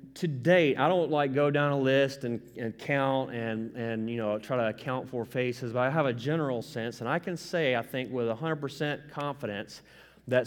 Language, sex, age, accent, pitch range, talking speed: English, male, 30-49, American, 115-140 Hz, 210 wpm